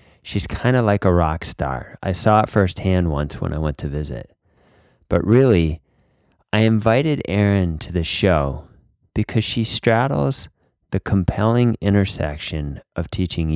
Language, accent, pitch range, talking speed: English, American, 80-105 Hz, 145 wpm